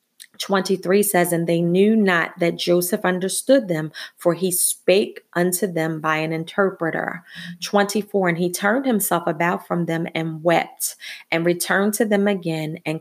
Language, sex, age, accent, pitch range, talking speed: English, female, 30-49, American, 170-200 Hz, 155 wpm